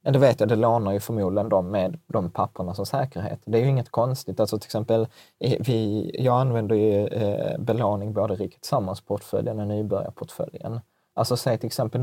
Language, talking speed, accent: Swedish, 185 wpm, native